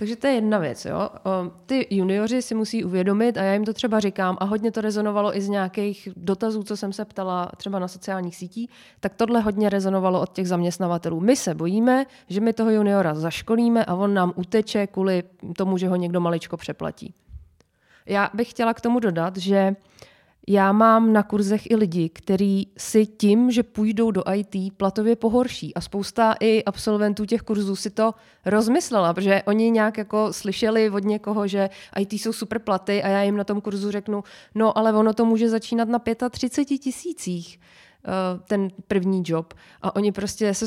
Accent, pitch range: native, 185-220 Hz